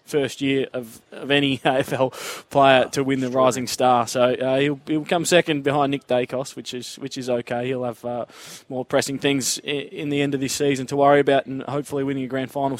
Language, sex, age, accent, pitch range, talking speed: English, male, 20-39, Australian, 125-145 Hz, 225 wpm